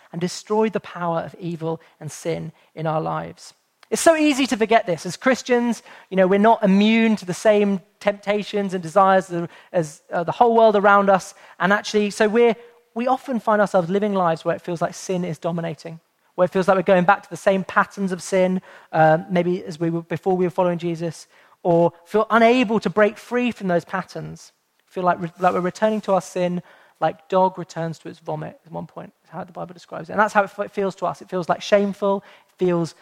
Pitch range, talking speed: 175-220 Hz, 225 wpm